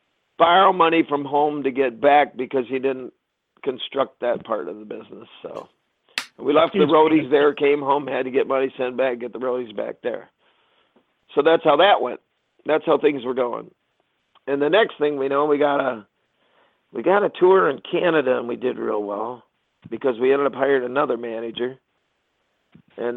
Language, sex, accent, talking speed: English, male, American, 190 wpm